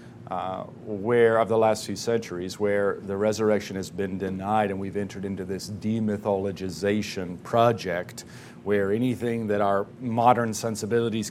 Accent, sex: American, male